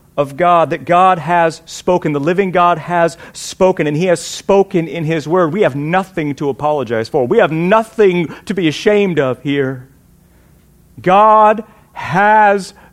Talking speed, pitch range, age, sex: 160 wpm, 120-200 Hz, 40-59, male